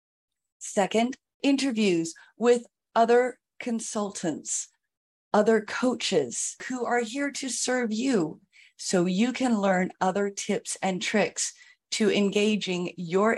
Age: 30-49